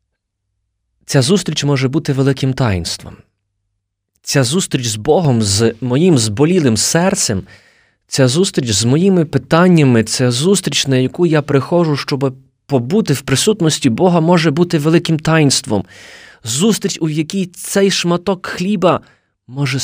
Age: 20-39